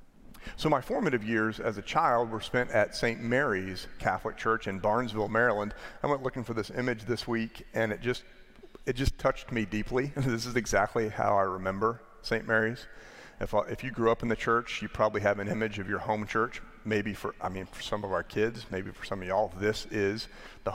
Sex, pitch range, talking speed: male, 105-125 Hz, 215 wpm